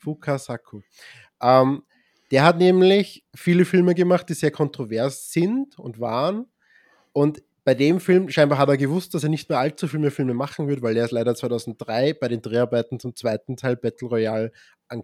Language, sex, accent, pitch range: German, male, German, 120-160 Hz